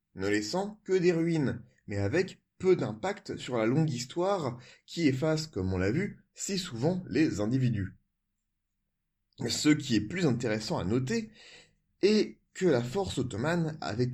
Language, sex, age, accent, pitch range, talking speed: French, male, 30-49, French, 100-165 Hz, 155 wpm